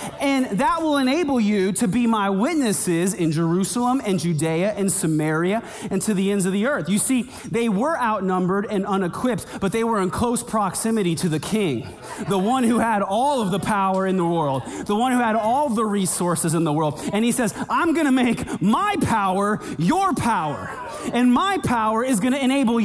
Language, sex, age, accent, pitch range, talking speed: English, male, 30-49, American, 205-275 Hz, 200 wpm